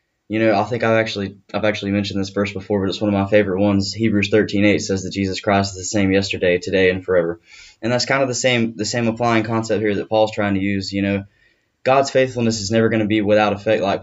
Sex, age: male, 10-29